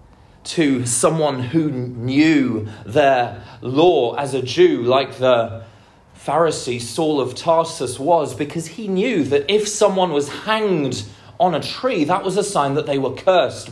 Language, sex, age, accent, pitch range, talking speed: English, male, 30-49, British, 130-185 Hz, 155 wpm